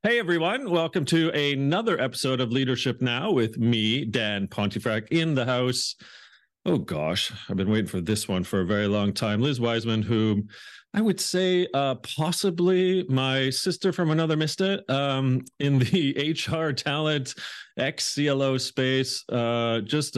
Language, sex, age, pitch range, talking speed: English, male, 40-59, 110-155 Hz, 150 wpm